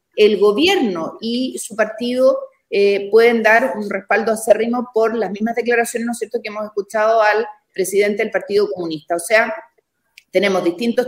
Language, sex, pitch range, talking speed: Spanish, female, 200-260 Hz, 175 wpm